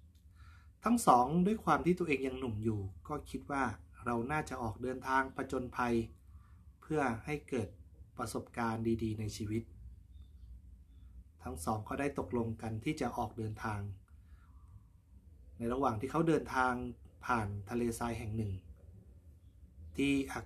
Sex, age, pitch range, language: male, 30-49, 90-130 Hz, Thai